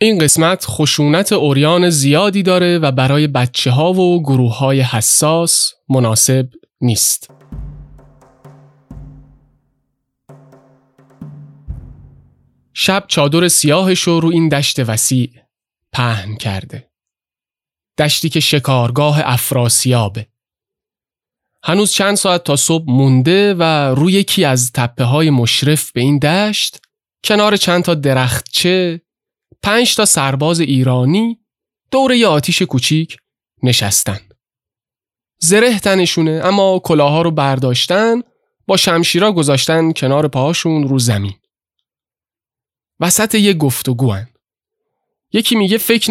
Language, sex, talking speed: Persian, male, 105 wpm